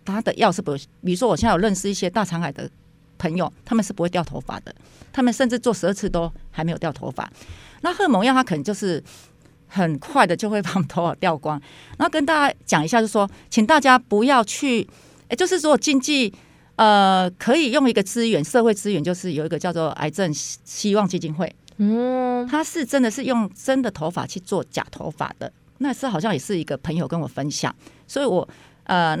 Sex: female